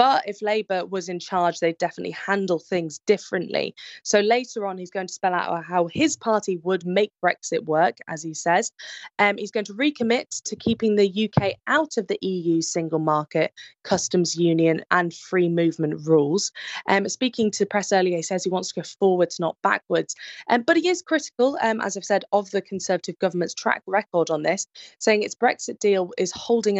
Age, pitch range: 20-39, 175-230 Hz